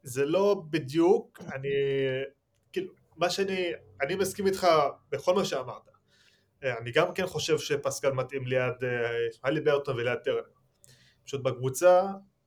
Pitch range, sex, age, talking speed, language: 115-150 Hz, male, 20-39, 125 wpm, Hebrew